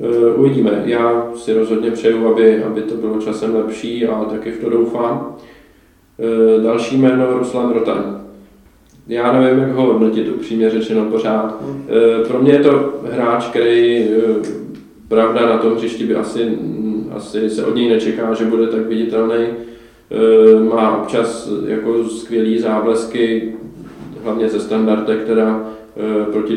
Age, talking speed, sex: 20-39, 135 wpm, male